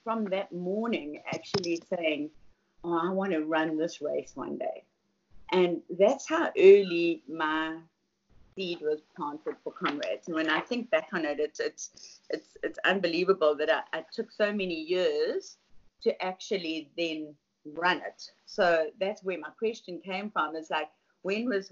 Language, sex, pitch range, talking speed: English, female, 160-200 Hz, 165 wpm